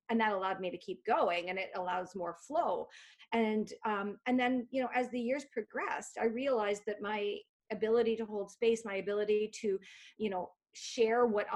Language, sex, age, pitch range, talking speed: English, female, 40-59, 195-235 Hz, 190 wpm